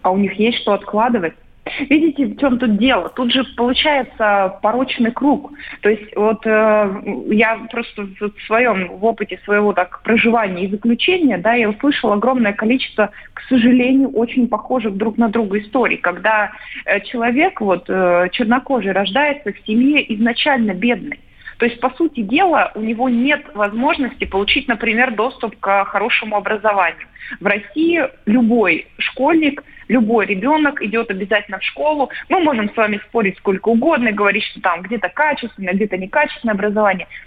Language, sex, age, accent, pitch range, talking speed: Russian, female, 30-49, native, 210-265 Hz, 150 wpm